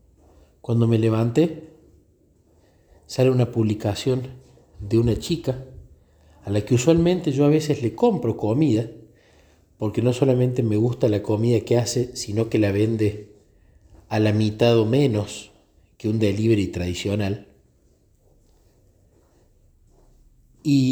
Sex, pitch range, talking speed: male, 100-135 Hz, 120 wpm